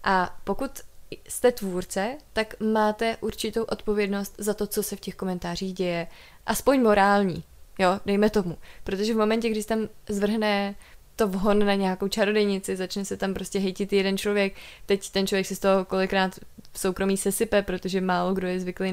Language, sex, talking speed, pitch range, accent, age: Czech, female, 170 wpm, 185-210 Hz, native, 20-39